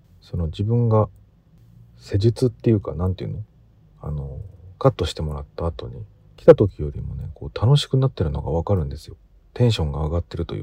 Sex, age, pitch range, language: male, 40-59, 85-125 Hz, Japanese